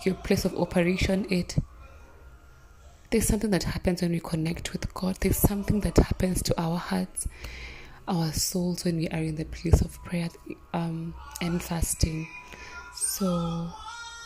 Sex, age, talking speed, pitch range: female, 20-39, 145 wpm, 135-180 Hz